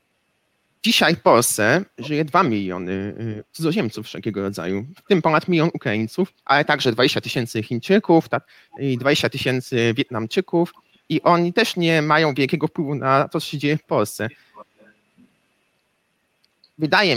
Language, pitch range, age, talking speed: Polish, 120-175 Hz, 30-49, 135 wpm